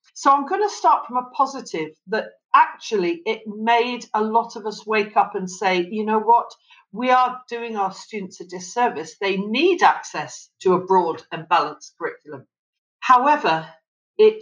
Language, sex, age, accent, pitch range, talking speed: English, female, 50-69, British, 200-265 Hz, 170 wpm